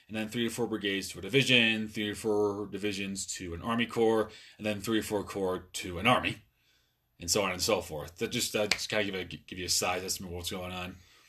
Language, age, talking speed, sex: English, 30-49, 250 wpm, male